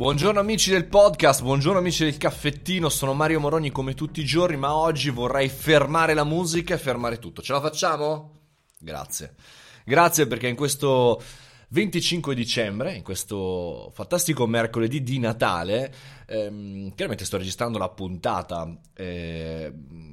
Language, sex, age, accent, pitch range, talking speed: Italian, male, 20-39, native, 95-140 Hz, 140 wpm